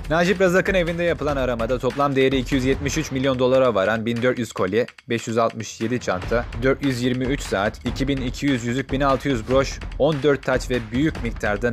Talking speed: 135 wpm